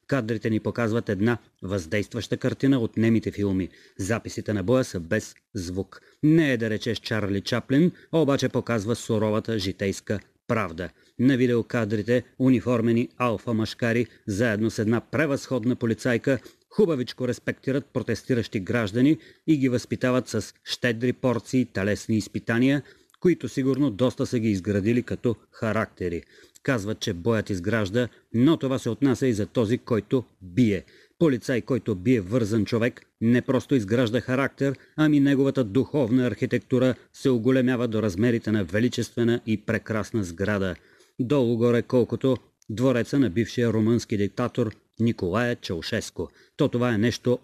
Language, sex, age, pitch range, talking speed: Bulgarian, male, 30-49, 110-130 Hz, 130 wpm